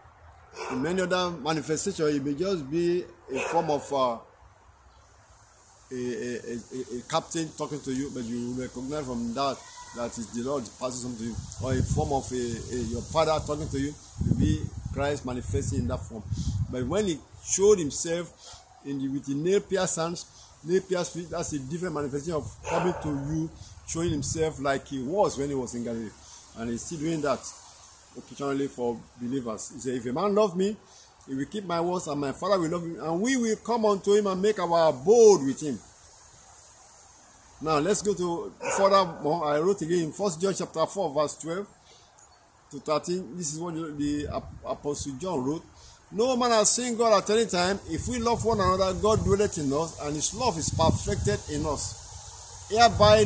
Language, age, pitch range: English, 50-69, 125-180 Hz